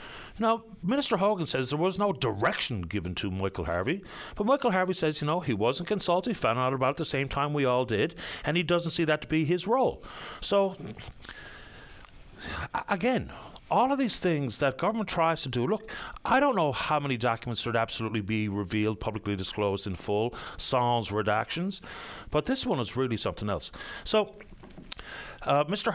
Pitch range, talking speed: 110-175 Hz, 185 wpm